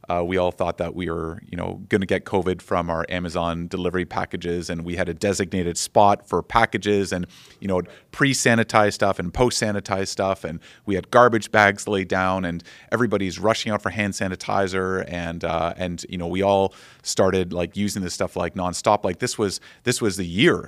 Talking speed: 195 wpm